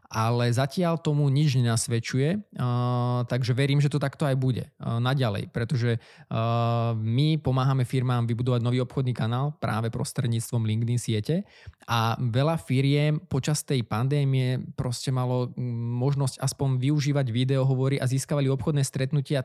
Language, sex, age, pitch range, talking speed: Czech, male, 20-39, 120-140 Hz, 135 wpm